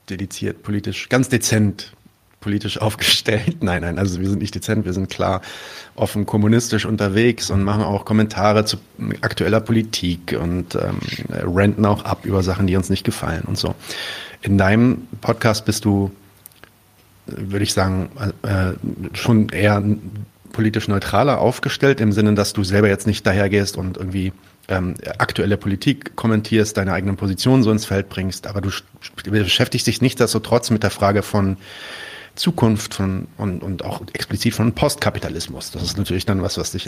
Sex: male